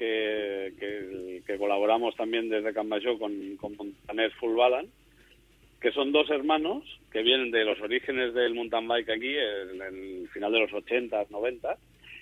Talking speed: 150 wpm